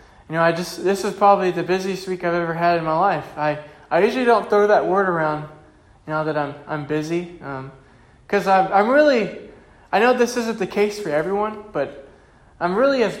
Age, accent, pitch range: 20-39, American, 145-180 Hz